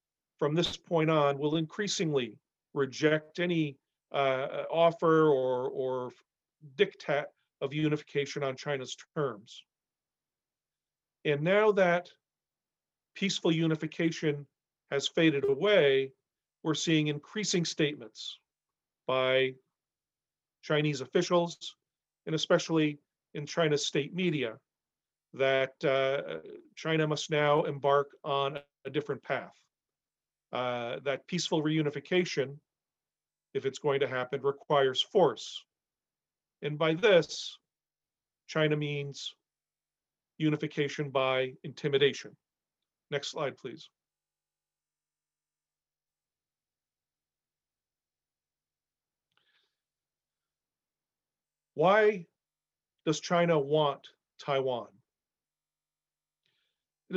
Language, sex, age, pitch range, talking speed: English, male, 40-59, 140-170 Hz, 80 wpm